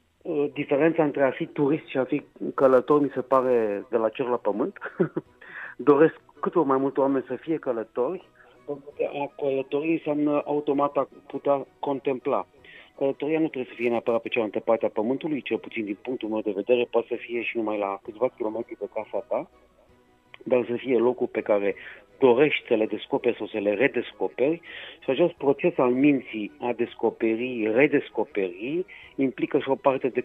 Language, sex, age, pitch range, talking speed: Romanian, male, 40-59, 115-145 Hz, 180 wpm